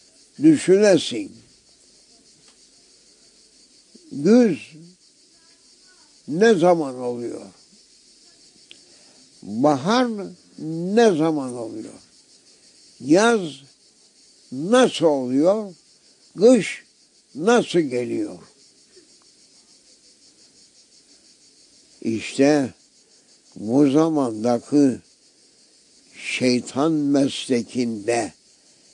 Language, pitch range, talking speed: English, 130-195 Hz, 40 wpm